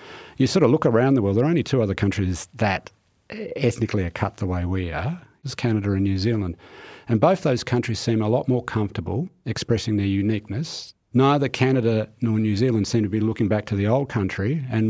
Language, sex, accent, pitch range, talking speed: English, male, Australian, 100-125 Hz, 215 wpm